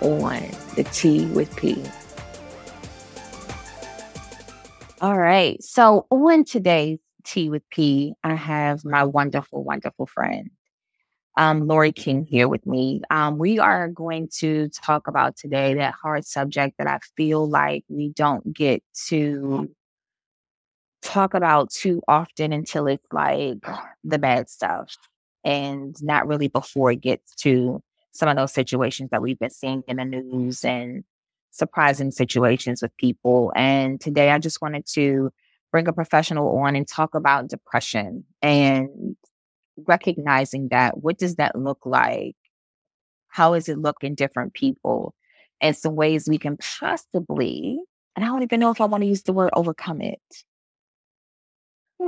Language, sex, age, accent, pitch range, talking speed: English, female, 20-39, American, 135-170 Hz, 145 wpm